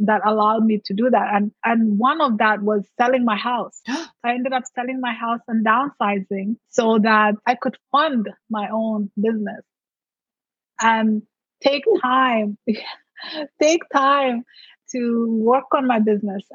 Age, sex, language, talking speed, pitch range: 20-39, female, English, 150 wpm, 220-255 Hz